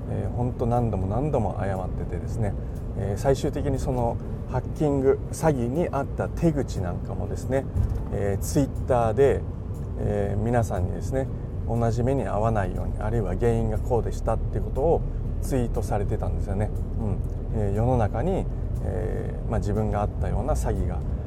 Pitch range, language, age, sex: 95-115 Hz, Japanese, 40-59, male